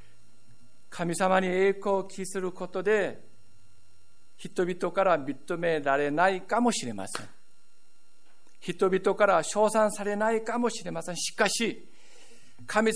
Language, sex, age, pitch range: Japanese, male, 50-69, 130-190 Hz